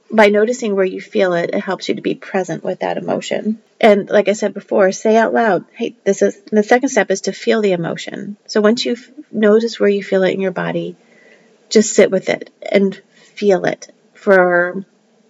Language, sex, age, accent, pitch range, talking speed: English, female, 30-49, American, 190-220 Hz, 210 wpm